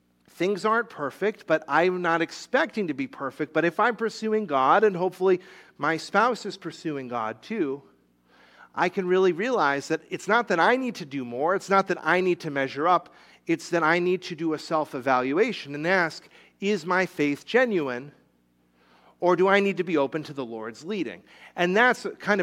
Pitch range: 145-205 Hz